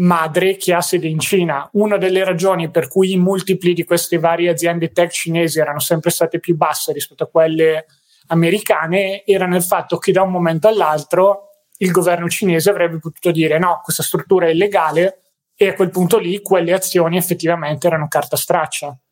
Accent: native